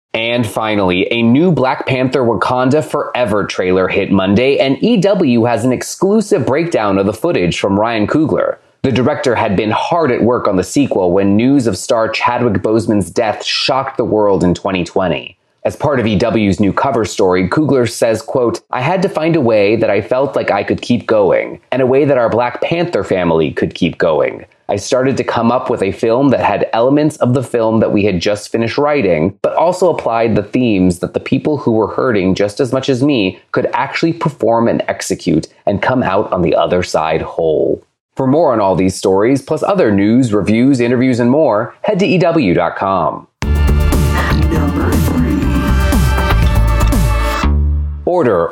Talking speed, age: 180 wpm, 30-49